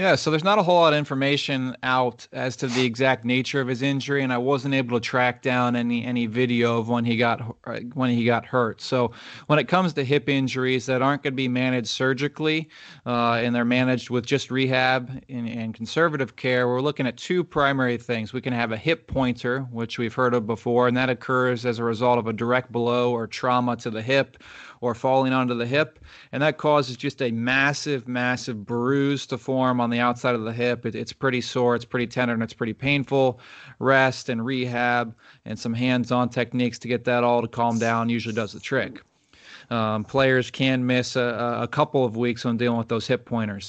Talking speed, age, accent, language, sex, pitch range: 215 wpm, 30-49, American, English, male, 120-135 Hz